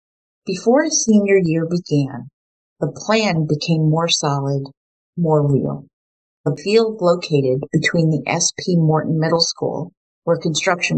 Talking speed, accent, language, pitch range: 125 wpm, American, English, 145-180 Hz